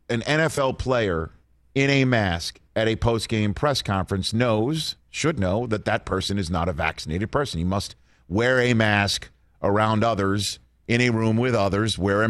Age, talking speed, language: 50-69, 175 wpm, English